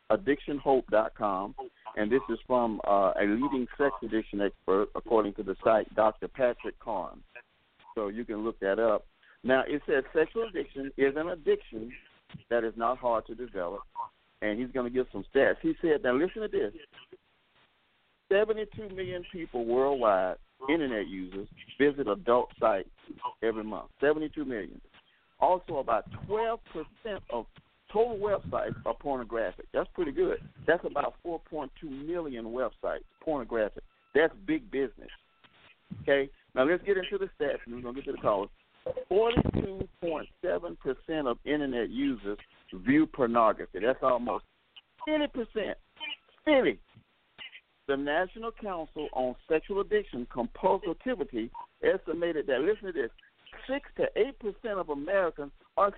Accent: American